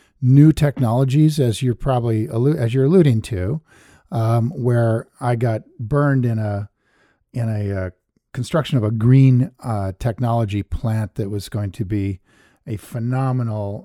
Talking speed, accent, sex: 145 wpm, American, male